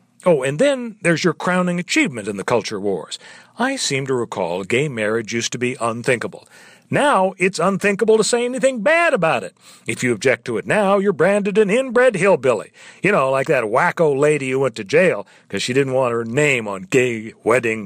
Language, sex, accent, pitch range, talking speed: English, male, American, 135-205 Hz, 200 wpm